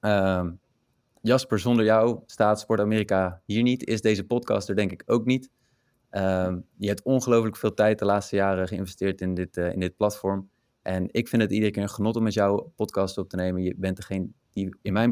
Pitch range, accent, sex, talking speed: 95-120 Hz, Dutch, male, 215 wpm